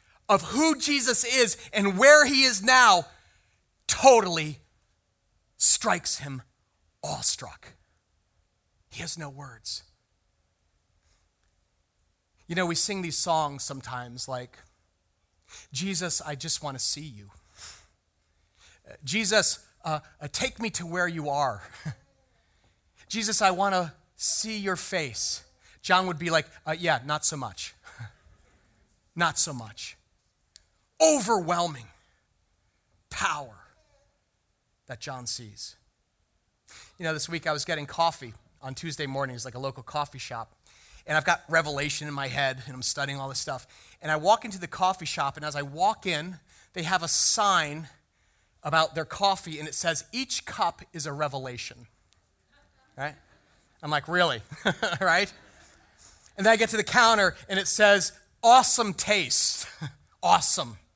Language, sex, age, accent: English, male, 30-49, American